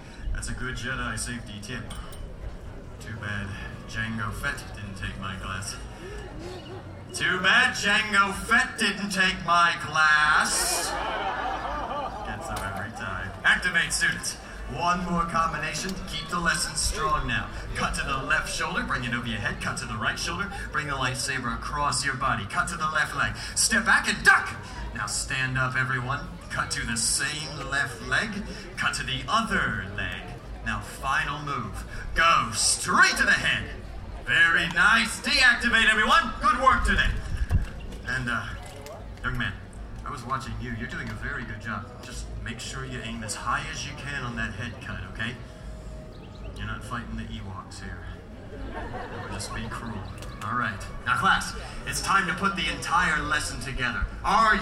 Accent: American